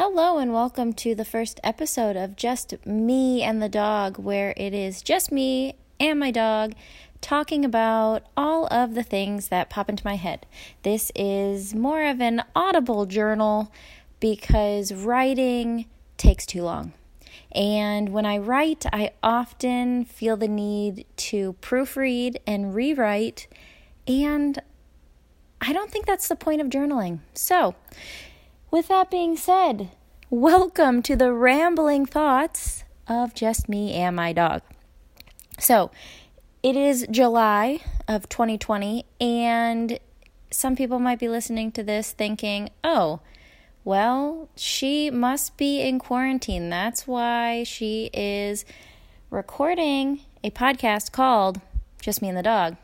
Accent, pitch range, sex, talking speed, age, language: American, 210-280 Hz, female, 135 wpm, 20-39, English